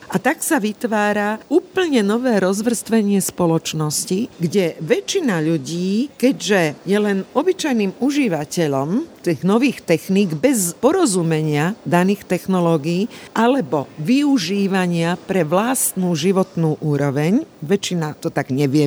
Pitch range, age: 170-225 Hz, 50-69